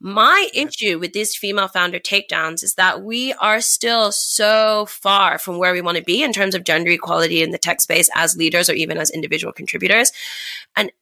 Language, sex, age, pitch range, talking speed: English, female, 20-39, 175-215 Hz, 200 wpm